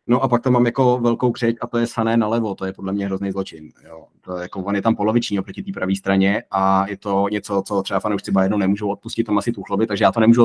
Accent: native